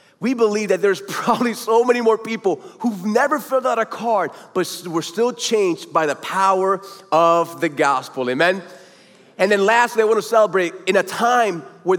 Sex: male